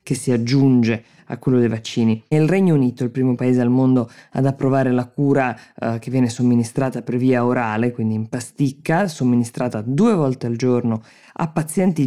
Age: 20-39